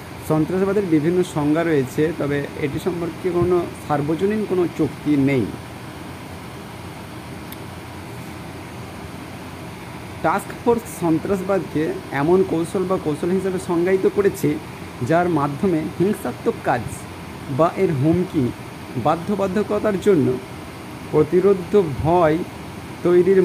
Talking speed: 85 wpm